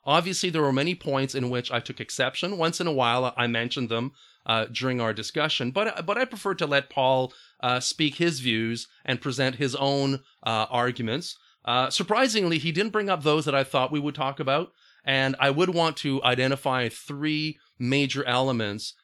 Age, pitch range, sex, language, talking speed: 40-59, 120-155 Hz, male, English, 190 wpm